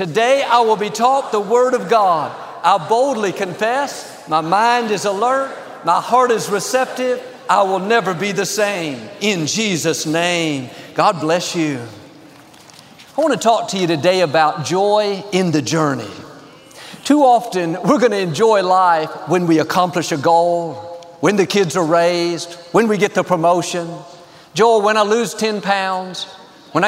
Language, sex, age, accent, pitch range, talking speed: English, male, 50-69, American, 170-215 Hz, 165 wpm